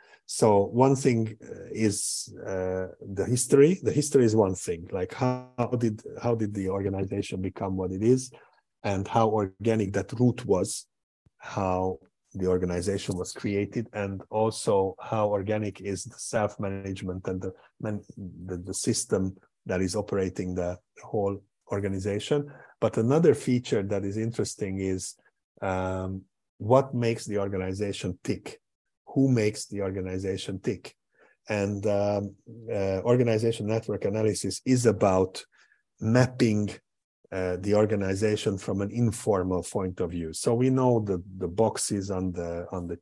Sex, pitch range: male, 95-110 Hz